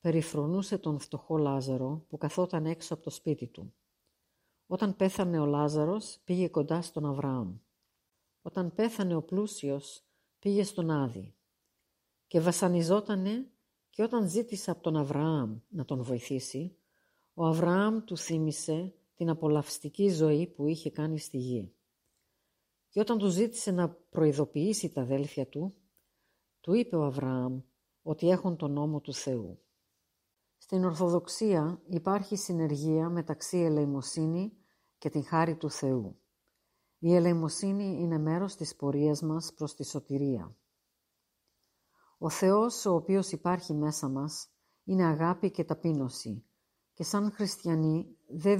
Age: 50-69